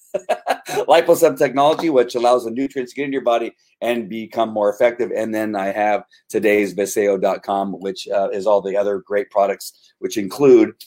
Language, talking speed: English, 170 wpm